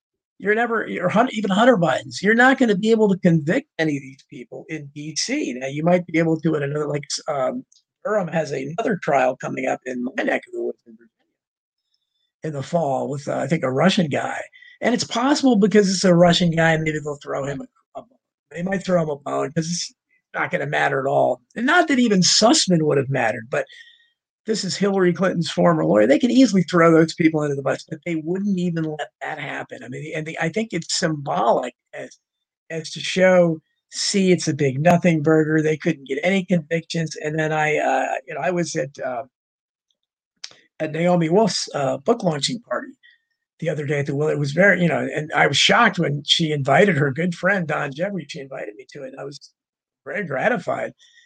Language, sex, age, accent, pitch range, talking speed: English, male, 50-69, American, 150-200 Hz, 220 wpm